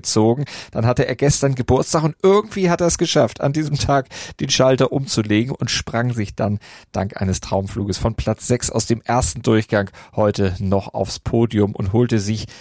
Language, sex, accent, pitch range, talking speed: German, male, German, 105-125 Hz, 180 wpm